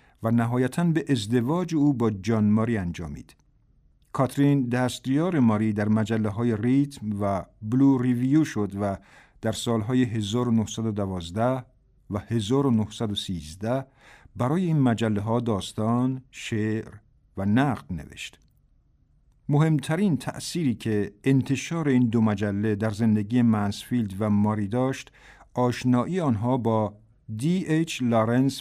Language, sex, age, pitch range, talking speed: Persian, male, 50-69, 110-135 Hz, 110 wpm